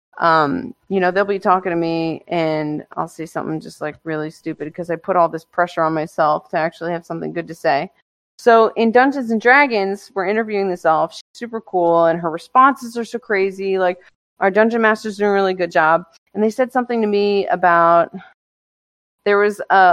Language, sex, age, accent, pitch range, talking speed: English, female, 30-49, American, 170-220 Hz, 205 wpm